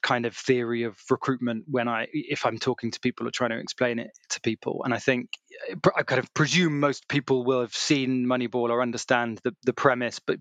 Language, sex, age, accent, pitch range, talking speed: English, male, 20-39, British, 120-140 Hz, 220 wpm